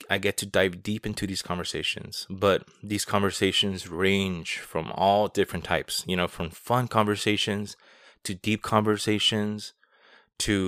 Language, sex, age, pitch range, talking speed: English, male, 20-39, 95-110 Hz, 140 wpm